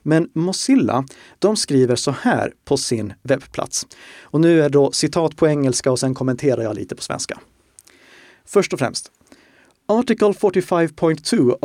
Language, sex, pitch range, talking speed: Swedish, male, 125-160 Hz, 150 wpm